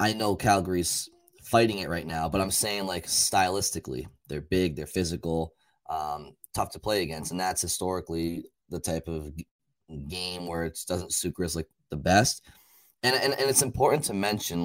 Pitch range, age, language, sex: 85-100 Hz, 20-39, English, male